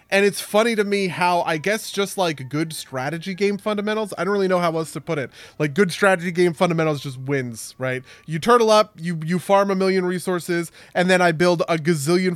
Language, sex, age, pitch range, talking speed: English, male, 20-39, 145-190 Hz, 225 wpm